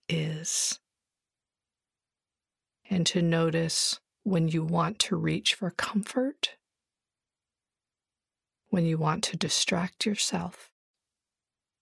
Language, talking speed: English, 85 wpm